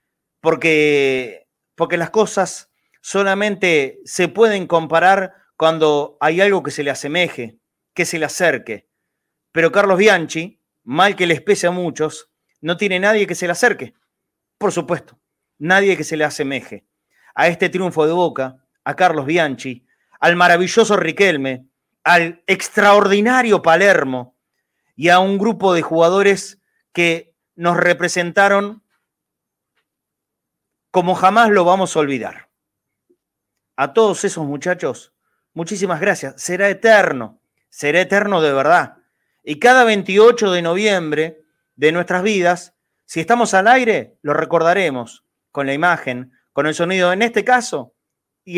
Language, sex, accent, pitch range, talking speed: Spanish, male, Argentinian, 155-195 Hz, 130 wpm